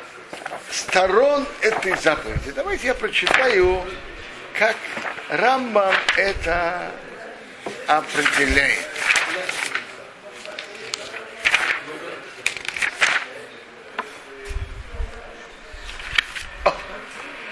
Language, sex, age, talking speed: Russian, male, 60-79, 40 wpm